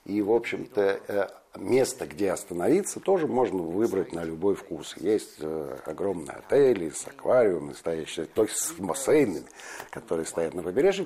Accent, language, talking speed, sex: native, Russian, 135 wpm, male